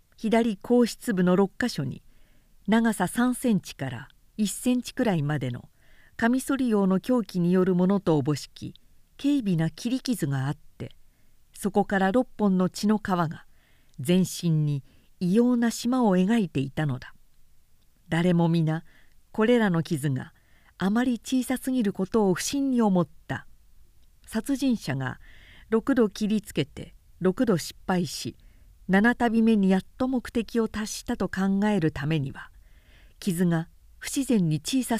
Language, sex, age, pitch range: Japanese, female, 50-69, 160-230 Hz